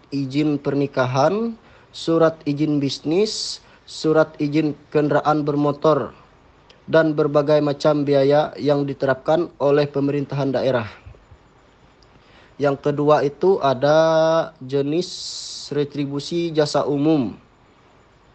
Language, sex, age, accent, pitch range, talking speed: Indonesian, male, 20-39, native, 135-155 Hz, 85 wpm